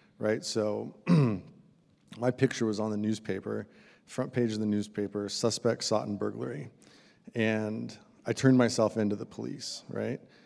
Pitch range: 105-125 Hz